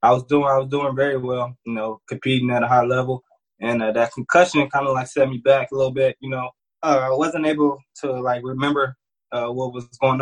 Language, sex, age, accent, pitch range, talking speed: English, male, 20-39, American, 125-140 Hz, 240 wpm